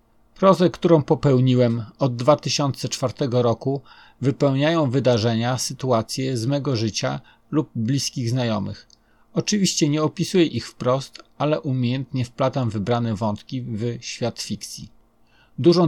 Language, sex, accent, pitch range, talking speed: Polish, male, native, 115-145 Hz, 110 wpm